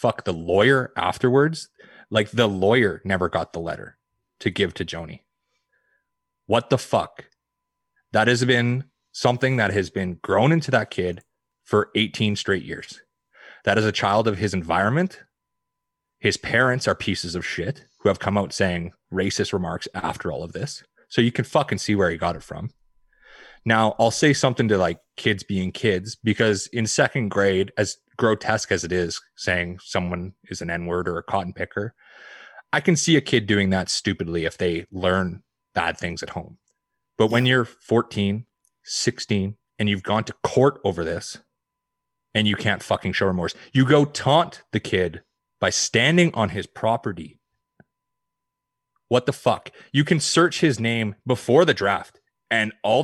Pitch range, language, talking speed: 100-140 Hz, English, 170 wpm